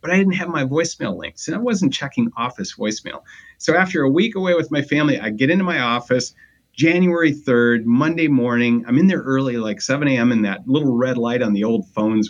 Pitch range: 110-160 Hz